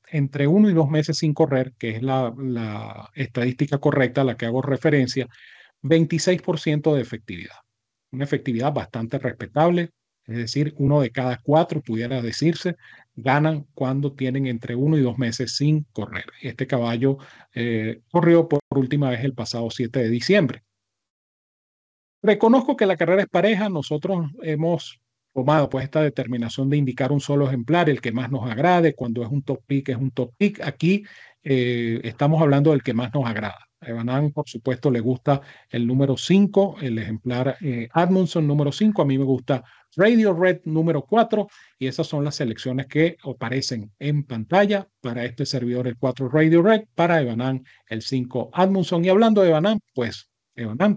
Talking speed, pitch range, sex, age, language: 170 wpm, 120-160 Hz, male, 40-59, Spanish